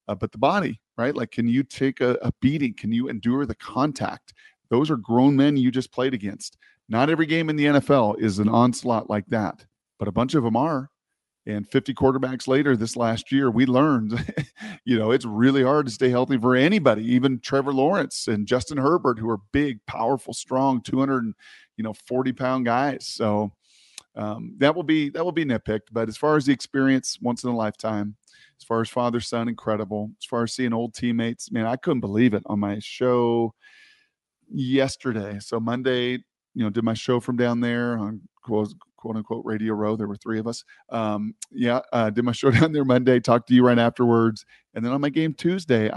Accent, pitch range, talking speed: American, 115-135 Hz, 190 wpm